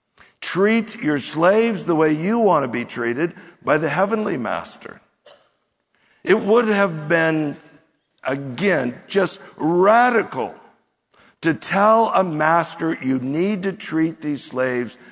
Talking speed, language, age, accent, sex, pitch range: 125 wpm, English, 60-79, American, male, 145-195 Hz